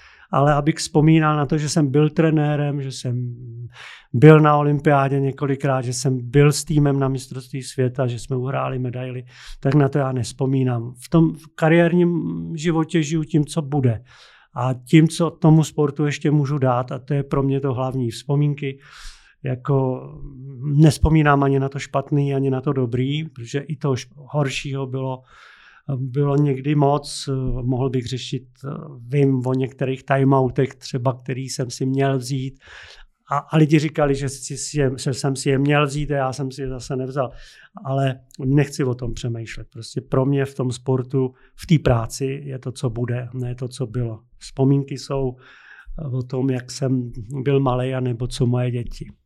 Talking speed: 175 wpm